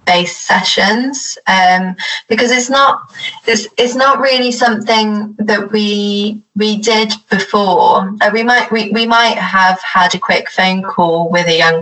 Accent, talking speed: British, 155 wpm